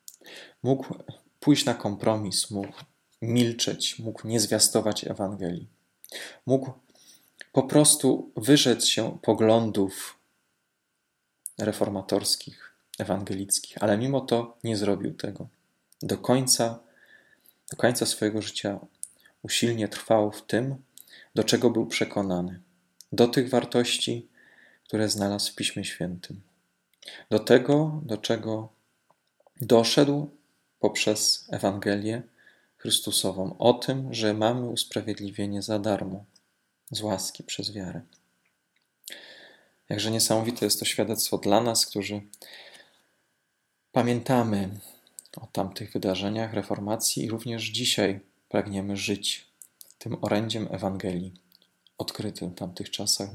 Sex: male